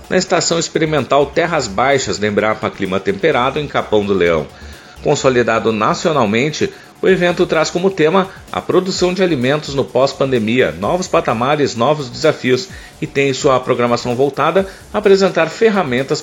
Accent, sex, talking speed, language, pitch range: Brazilian, male, 140 wpm, Portuguese, 120-160 Hz